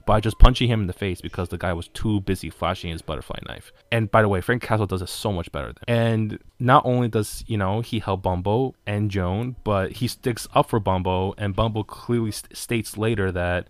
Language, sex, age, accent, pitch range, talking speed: English, male, 20-39, American, 95-115 Hz, 230 wpm